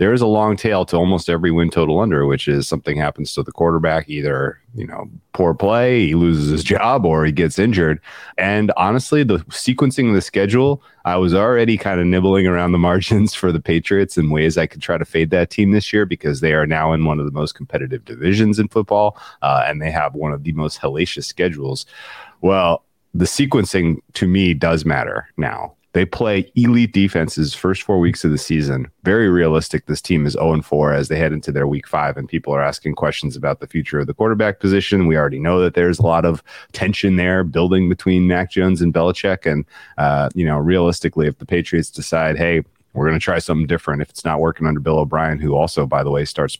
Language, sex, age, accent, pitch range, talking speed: English, male, 30-49, American, 75-95 Hz, 225 wpm